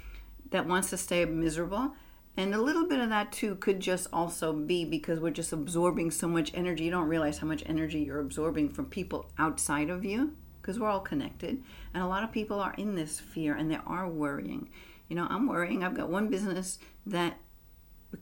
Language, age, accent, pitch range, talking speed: English, 50-69, American, 155-195 Hz, 205 wpm